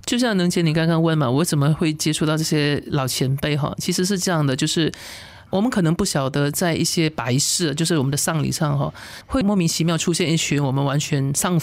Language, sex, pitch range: Chinese, male, 145-175 Hz